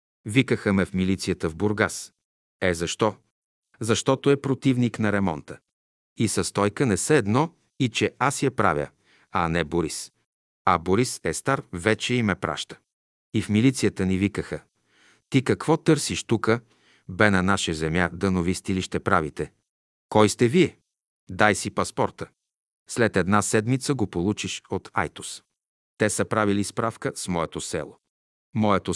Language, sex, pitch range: Bulgarian, male, 95-125 Hz